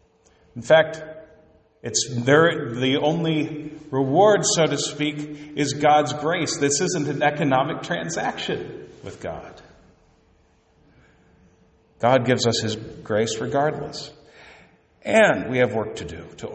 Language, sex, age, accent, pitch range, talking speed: English, male, 50-69, American, 100-145 Hz, 120 wpm